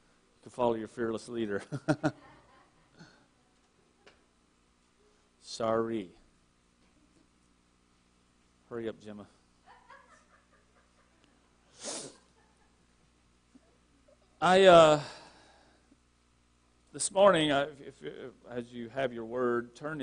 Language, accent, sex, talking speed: English, American, male, 65 wpm